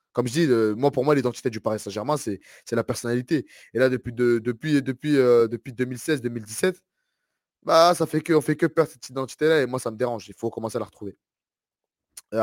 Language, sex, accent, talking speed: French, male, French, 225 wpm